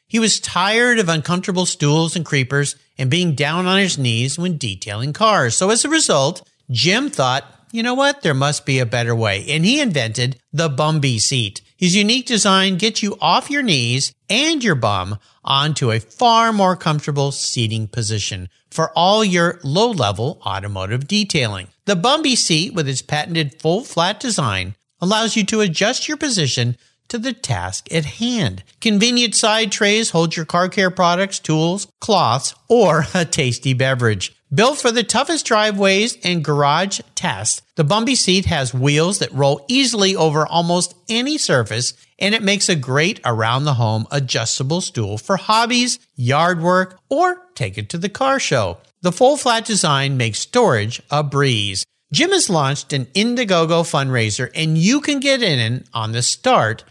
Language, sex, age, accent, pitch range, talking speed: English, male, 50-69, American, 130-210 Hz, 165 wpm